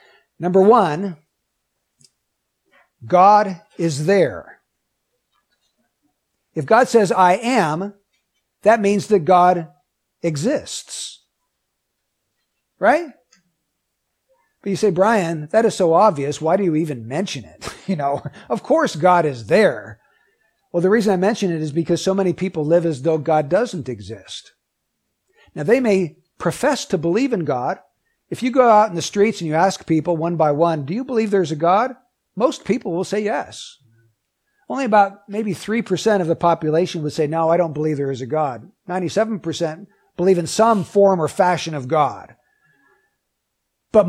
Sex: male